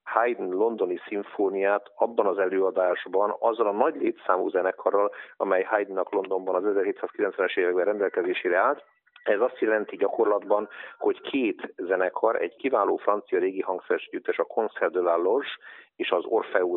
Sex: male